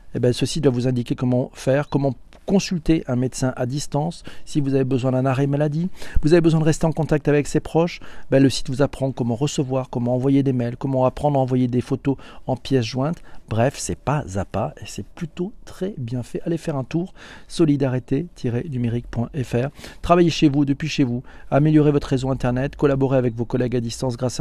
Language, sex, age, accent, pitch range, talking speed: French, male, 40-59, French, 120-150 Hz, 205 wpm